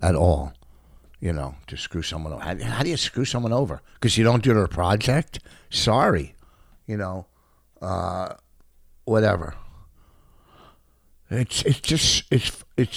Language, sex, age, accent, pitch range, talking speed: English, male, 60-79, American, 70-100 Hz, 140 wpm